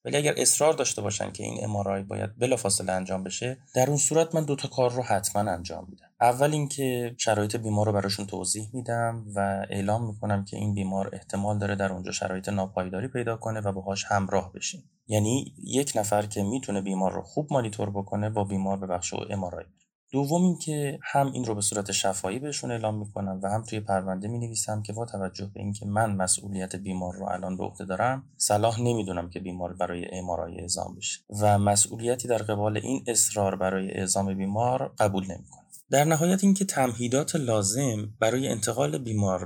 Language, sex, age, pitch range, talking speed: Persian, male, 20-39, 95-120 Hz, 185 wpm